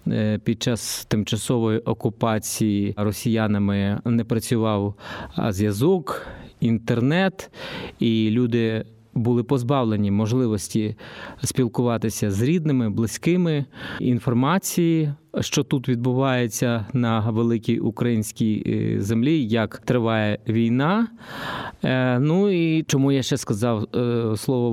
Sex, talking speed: male, 85 wpm